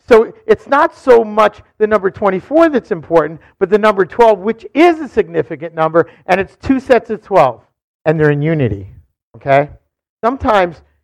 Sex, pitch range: male, 165-235 Hz